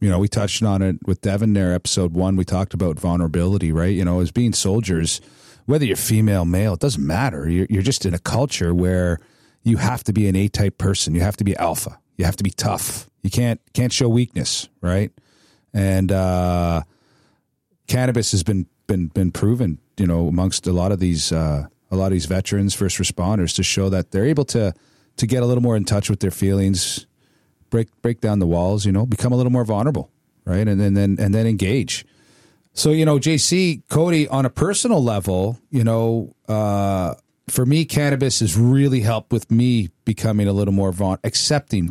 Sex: male